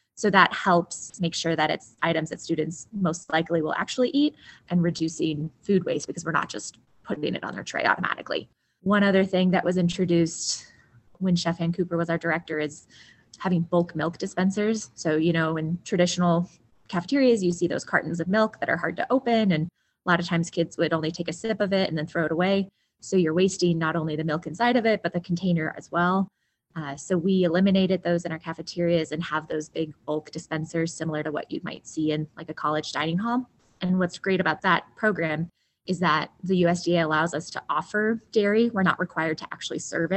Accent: American